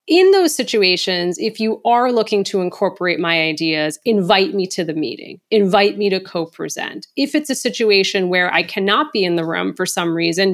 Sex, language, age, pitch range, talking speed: female, English, 30-49, 195-285 Hz, 195 wpm